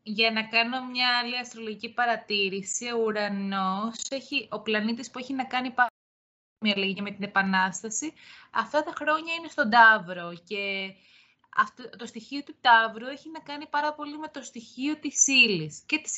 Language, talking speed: Greek, 165 wpm